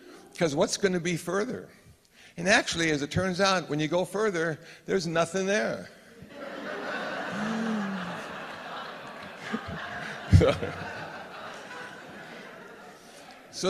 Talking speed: 90 wpm